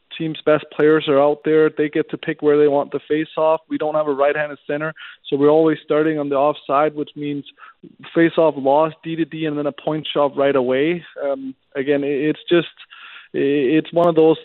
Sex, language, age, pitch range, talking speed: male, English, 20-39, 145-165 Hz, 220 wpm